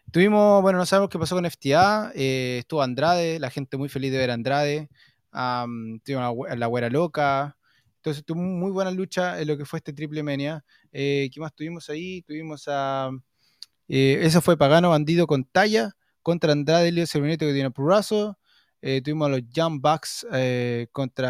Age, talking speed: 20-39, 185 wpm